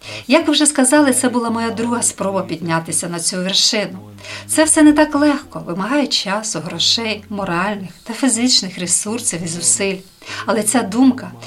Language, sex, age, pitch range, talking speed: Ukrainian, female, 50-69, 175-255 Hz, 155 wpm